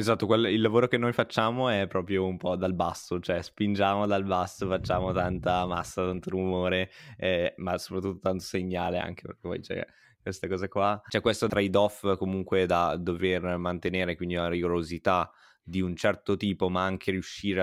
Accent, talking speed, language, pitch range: native, 175 wpm, Italian, 90-110 Hz